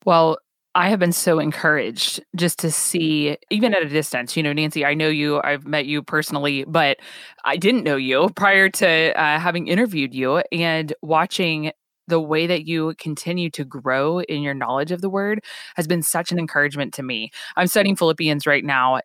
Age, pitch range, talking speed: 20-39, 150-180 Hz, 190 wpm